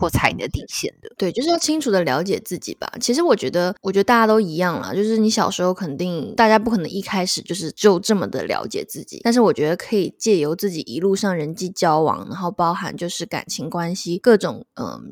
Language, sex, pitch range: Chinese, female, 170-215 Hz